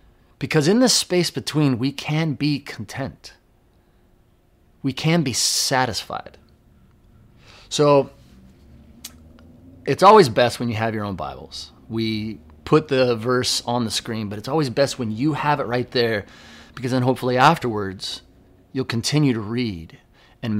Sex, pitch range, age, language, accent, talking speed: male, 110-145 Hz, 30-49, English, American, 145 wpm